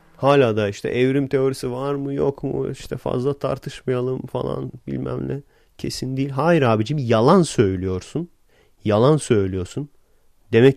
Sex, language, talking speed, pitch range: male, Turkish, 135 wpm, 110-145 Hz